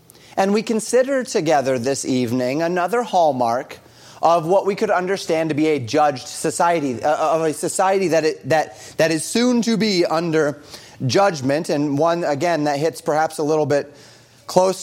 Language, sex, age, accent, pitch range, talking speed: English, male, 30-49, American, 150-190 Hz, 165 wpm